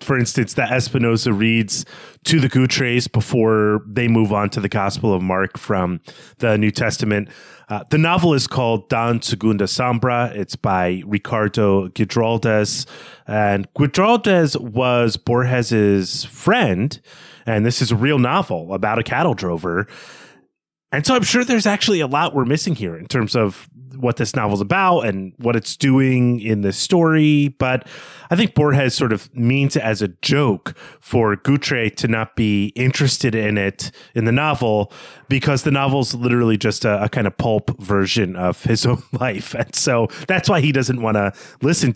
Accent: American